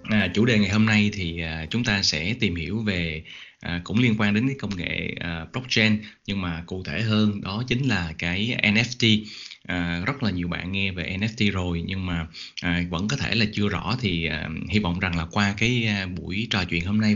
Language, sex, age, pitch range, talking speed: Vietnamese, male, 20-39, 90-115 Hz, 230 wpm